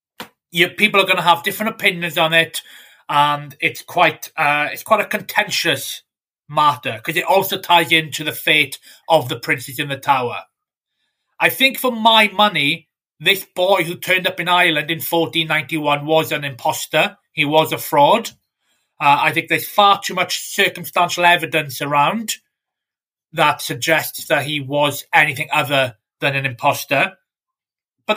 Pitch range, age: 155-210 Hz, 30-49